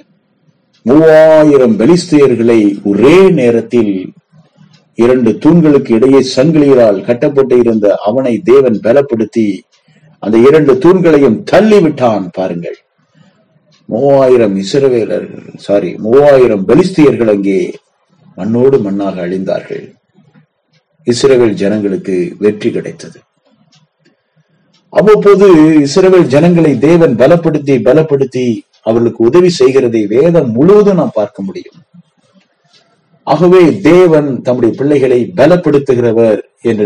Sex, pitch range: male, 110-165 Hz